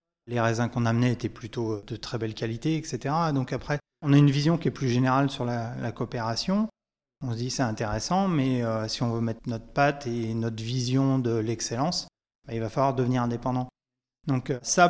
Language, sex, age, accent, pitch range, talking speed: French, male, 30-49, French, 120-140 Hz, 205 wpm